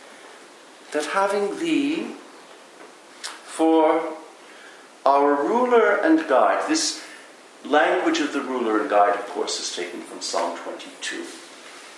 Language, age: English, 60-79